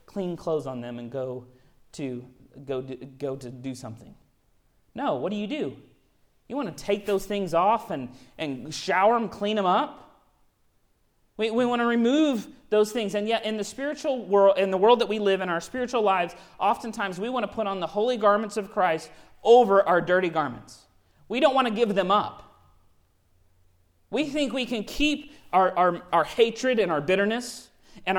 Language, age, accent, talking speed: English, 30-49, American, 190 wpm